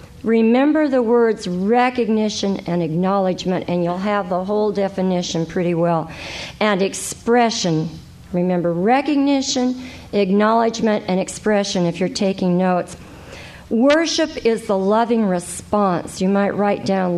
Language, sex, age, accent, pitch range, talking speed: English, female, 50-69, American, 195-240 Hz, 120 wpm